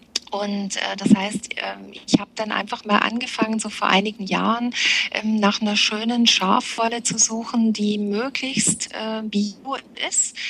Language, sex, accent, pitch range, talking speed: German, female, German, 205-235 Hz, 155 wpm